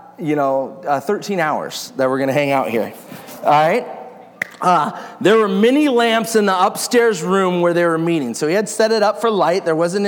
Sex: male